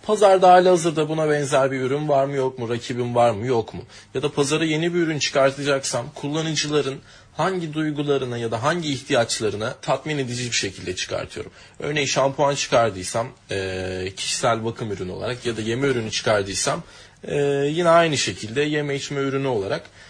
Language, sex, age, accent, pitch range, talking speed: Turkish, male, 30-49, native, 130-170 Hz, 160 wpm